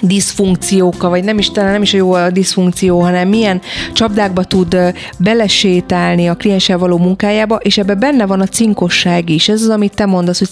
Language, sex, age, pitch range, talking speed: Hungarian, female, 30-49, 180-210 Hz, 190 wpm